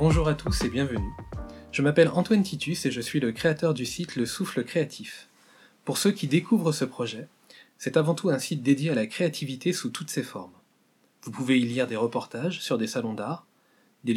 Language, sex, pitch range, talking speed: French, male, 120-160 Hz, 210 wpm